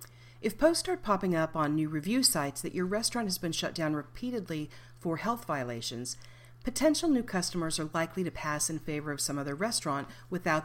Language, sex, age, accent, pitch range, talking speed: English, female, 40-59, American, 145-205 Hz, 190 wpm